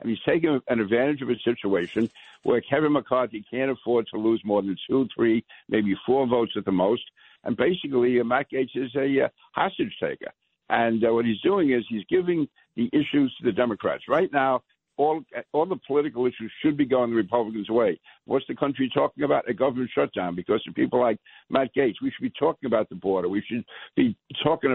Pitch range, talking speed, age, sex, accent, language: 110-135 Hz, 210 wpm, 60-79, male, American, English